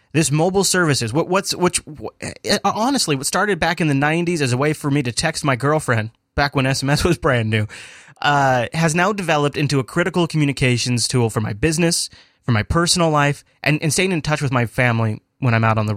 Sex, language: male, English